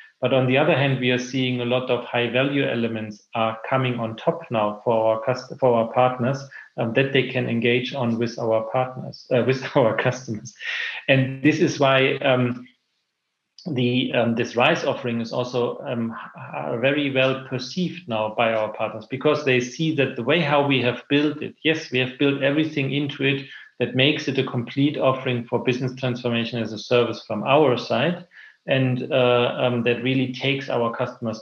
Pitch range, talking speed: 120-135 Hz, 185 wpm